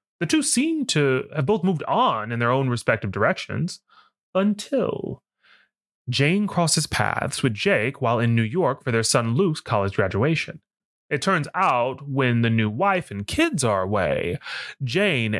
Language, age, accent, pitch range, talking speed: English, 30-49, American, 115-170 Hz, 160 wpm